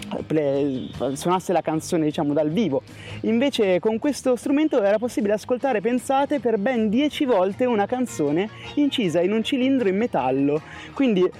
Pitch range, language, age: 175-235 Hz, Italian, 30-49